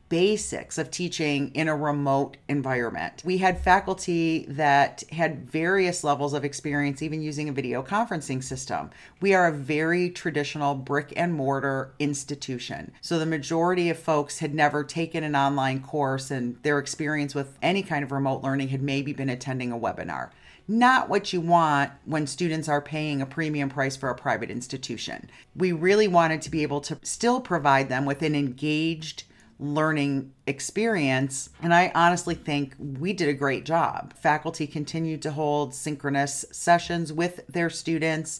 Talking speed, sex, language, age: 165 wpm, female, English, 40-59